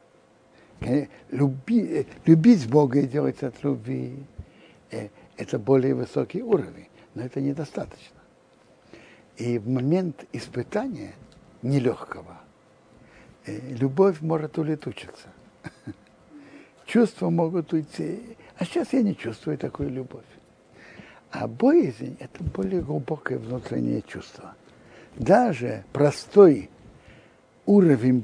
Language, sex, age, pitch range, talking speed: Russian, male, 60-79, 120-170 Hz, 90 wpm